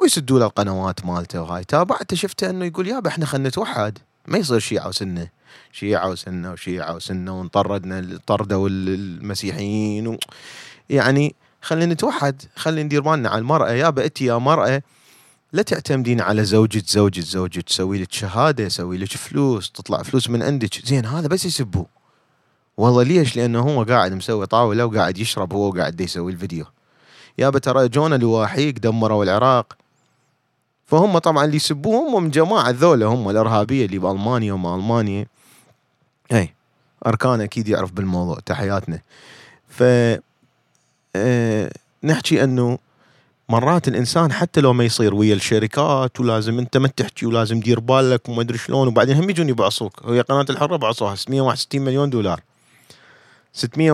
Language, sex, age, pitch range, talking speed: Arabic, male, 30-49, 100-145 Hz, 145 wpm